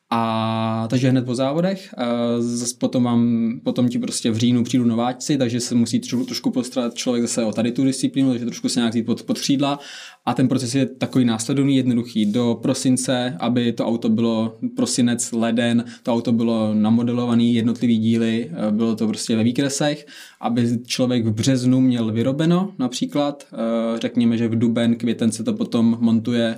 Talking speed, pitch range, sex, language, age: 165 wpm, 110-125 Hz, male, Czech, 20-39